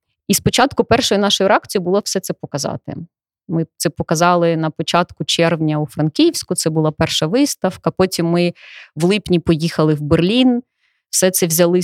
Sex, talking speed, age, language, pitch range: female, 155 wpm, 20-39, Ukrainian, 170-200 Hz